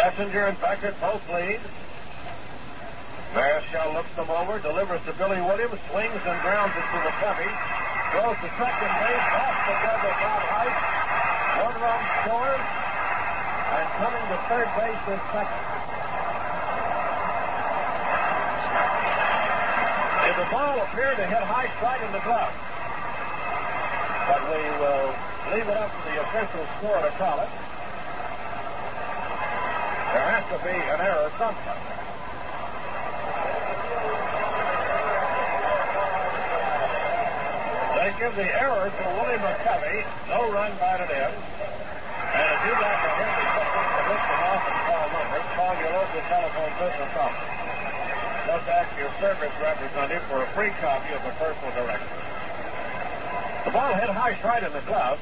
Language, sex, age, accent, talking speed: English, male, 60-79, American, 135 wpm